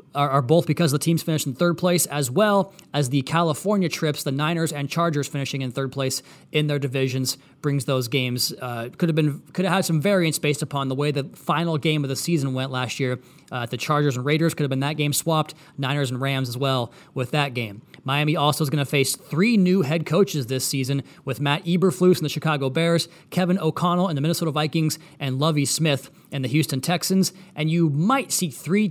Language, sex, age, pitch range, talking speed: English, male, 30-49, 140-170 Hz, 220 wpm